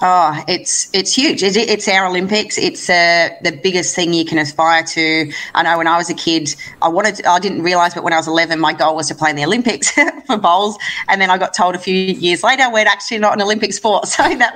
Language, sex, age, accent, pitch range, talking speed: English, female, 30-49, Australian, 160-190 Hz, 245 wpm